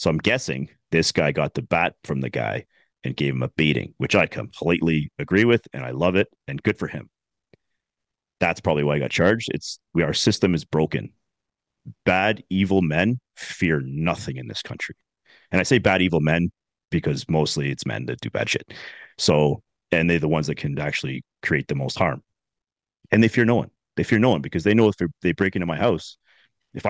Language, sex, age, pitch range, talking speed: English, male, 40-59, 75-100 Hz, 210 wpm